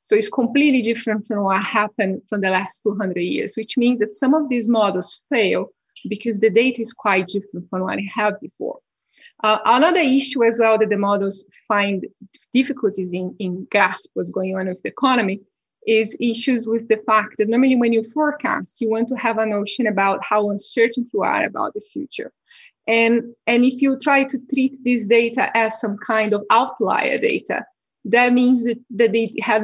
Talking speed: 190 wpm